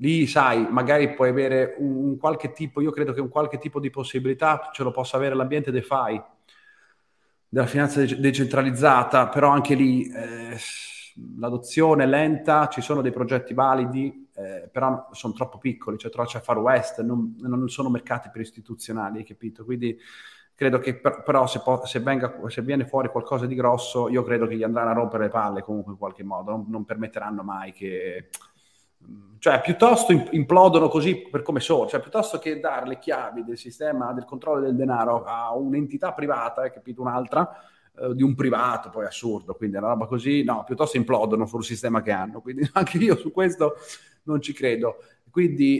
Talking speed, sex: 185 wpm, male